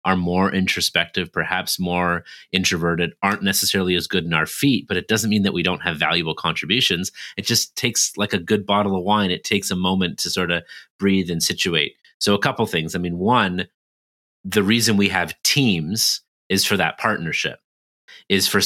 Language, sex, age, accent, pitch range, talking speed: English, male, 30-49, American, 90-110 Hz, 195 wpm